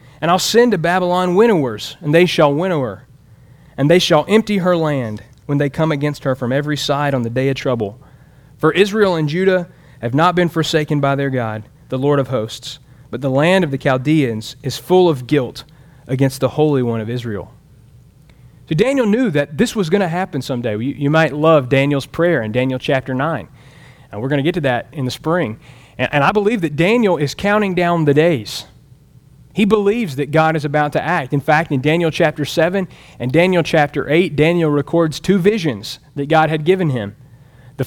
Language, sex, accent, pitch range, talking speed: English, male, American, 130-170 Hz, 205 wpm